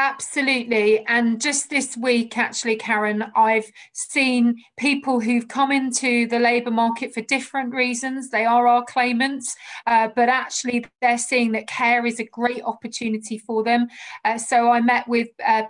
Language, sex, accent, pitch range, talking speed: Ukrainian, female, British, 225-255 Hz, 160 wpm